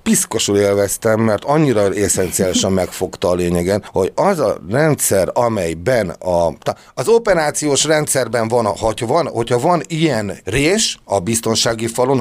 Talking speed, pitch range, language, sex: 135 wpm, 110-150 Hz, Hungarian, male